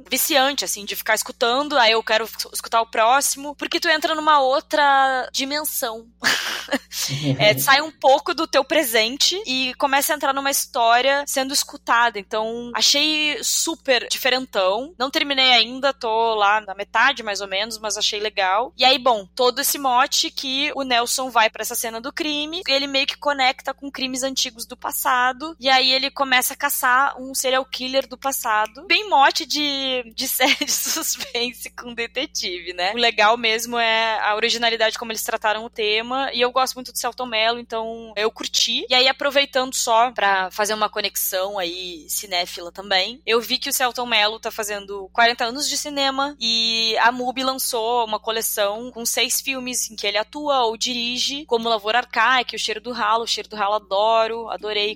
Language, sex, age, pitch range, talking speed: Portuguese, female, 10-29, 220-270 Hz, 180 wpm